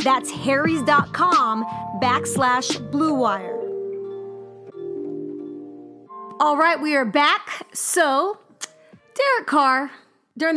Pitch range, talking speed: 255-335 Hz, 80 wpm